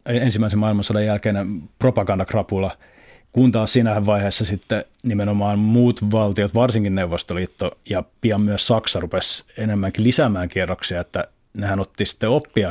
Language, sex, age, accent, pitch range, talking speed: Finnish, male, 30-49, native, 95-110 Hz, 125 wpm